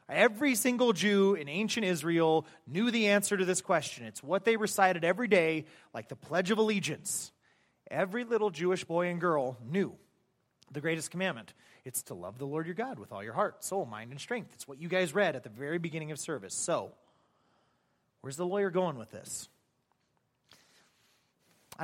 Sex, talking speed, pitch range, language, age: male, 185 wpm, 150-200 Hz, English, 30-49